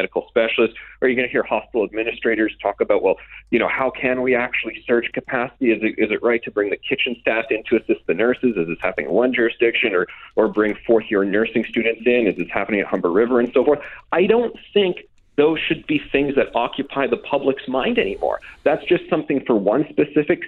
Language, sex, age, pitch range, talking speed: English, male, 40-59, 115-160 Hz, 225 wpm